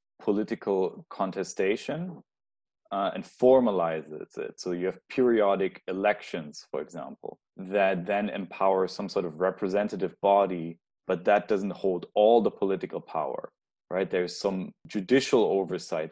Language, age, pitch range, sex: English, 30-49, 85-105 Hz, male